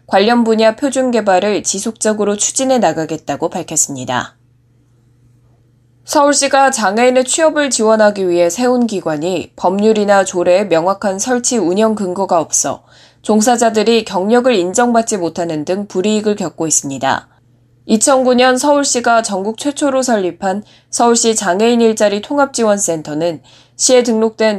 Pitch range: 170-230 Hz